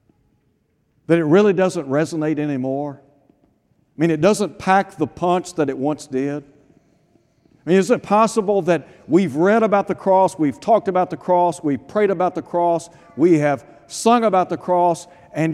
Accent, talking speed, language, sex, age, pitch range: American, 175 wpm, English, male, 60-79, 135-180 Hz